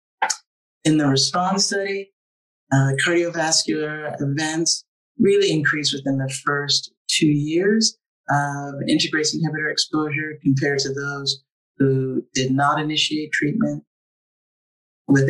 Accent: American